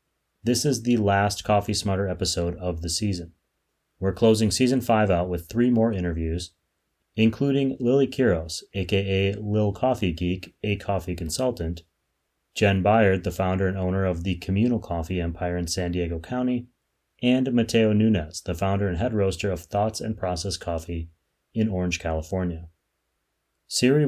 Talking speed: 150 wpm